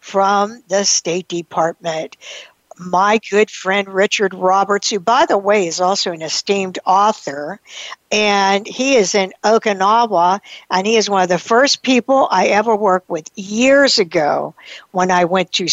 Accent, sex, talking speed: American, female, 155 wpm